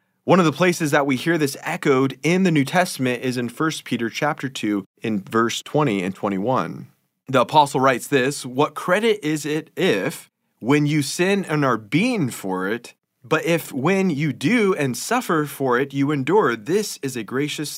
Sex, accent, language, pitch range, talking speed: male, American, English, 120-155 Hz, 190 wpm